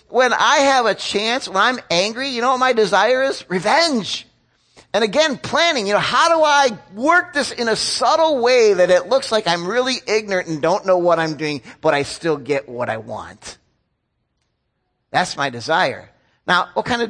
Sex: male